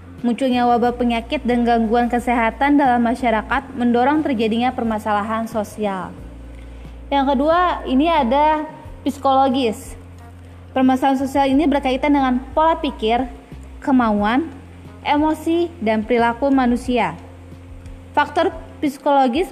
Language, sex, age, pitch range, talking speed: Indonesian, female, 20-39, 225-275 Hz, 95 wpm